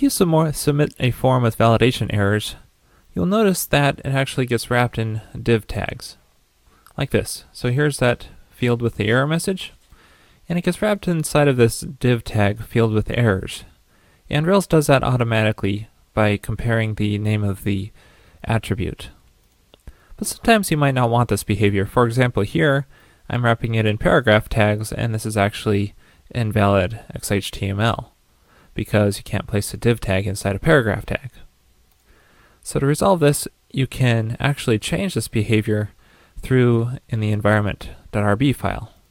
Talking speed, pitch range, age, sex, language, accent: 155 wpm, 105-130 Hz, 20-39, male, English, American